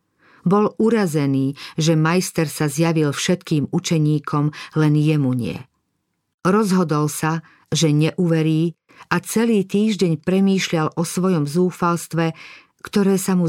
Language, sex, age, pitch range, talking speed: Slovak, female, 50-69, 150-180 Hz, 110 wpm